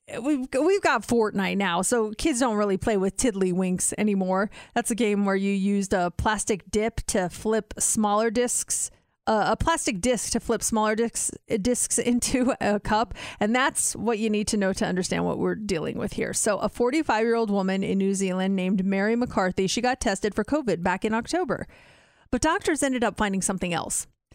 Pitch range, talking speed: 210-300 Hz, 195 wpm